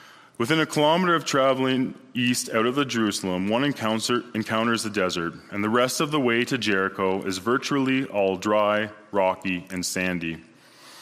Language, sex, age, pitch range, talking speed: English, male, 20-39, 95-120 Hz, 160 wpm